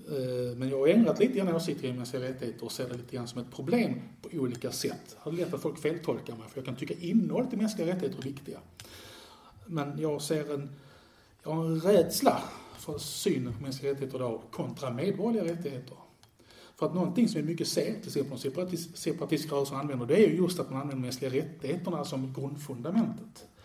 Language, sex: English, male